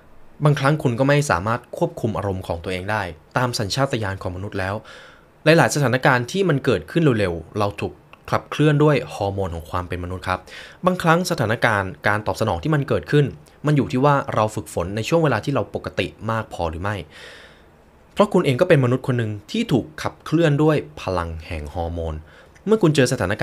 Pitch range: 95-140 Hz